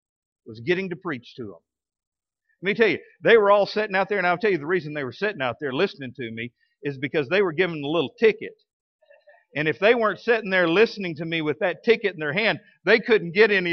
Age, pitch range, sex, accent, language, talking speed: 50-69, 165-240 Hz, male, American, English, 250 wpm